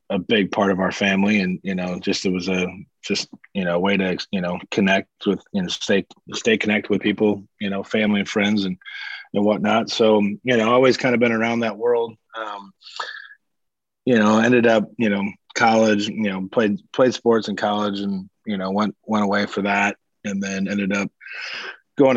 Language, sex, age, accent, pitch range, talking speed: English, male, 20-39, American, 95-110 Hz, 200 wpm